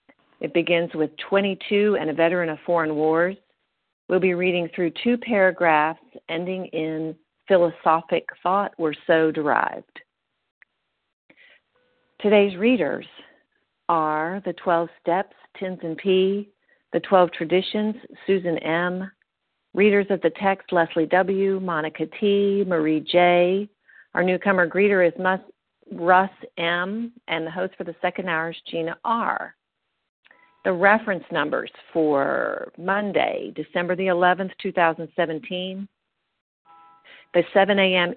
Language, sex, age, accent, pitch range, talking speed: English, female, 50-69, American, 165-200 Hz, 120 wpm